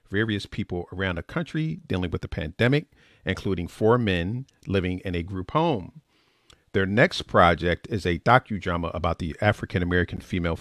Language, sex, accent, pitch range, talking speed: English, male, American, 90-110 Hz, 155 wpm